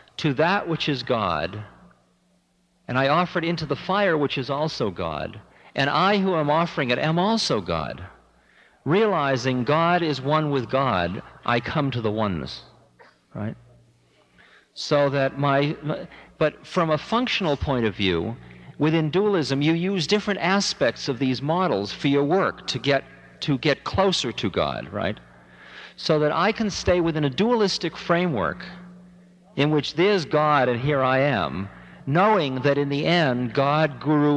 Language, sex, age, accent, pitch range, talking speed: English, male, 50-69, American, 120-170 Hz, 160 wpm